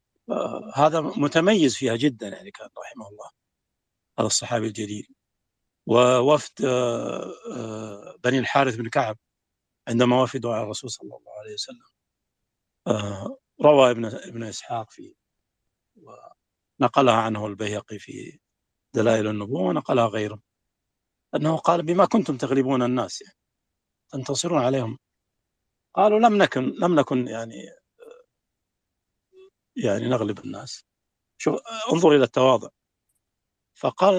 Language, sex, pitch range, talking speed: English, male, 110-170 Hz, 105 wpm